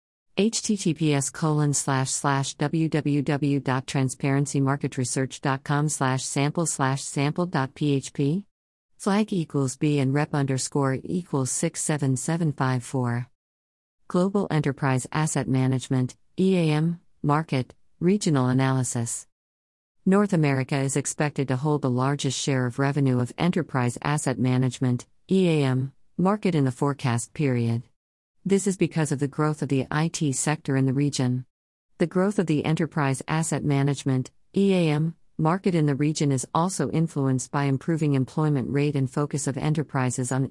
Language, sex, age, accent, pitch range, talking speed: English, female, 50-69, American, 130-160 Hz, 130 wpm